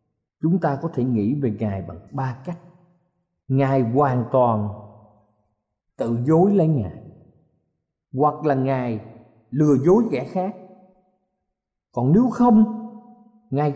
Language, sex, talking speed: Vietnamese, male, 120 wpm